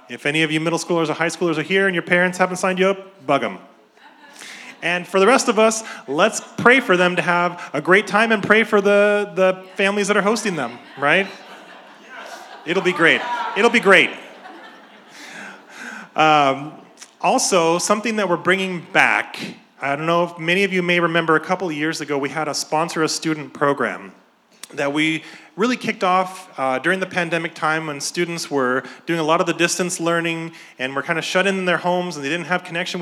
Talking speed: 205 wpm